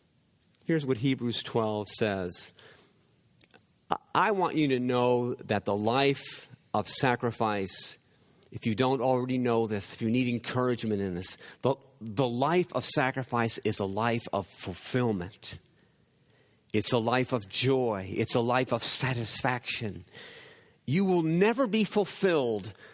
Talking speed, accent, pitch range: 135 wpm, American, 115-150 Hz